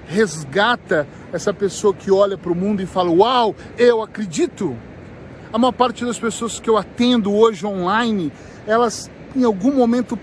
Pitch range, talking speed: 195-240 Hz, 160 wpm